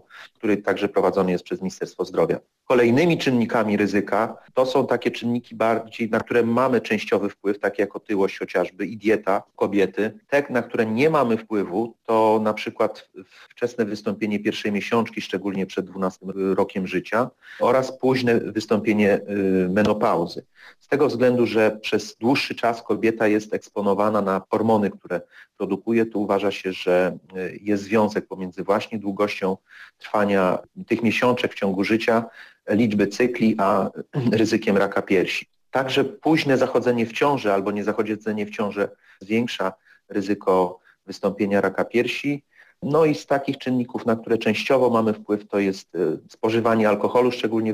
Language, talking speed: Polish, 145 wpm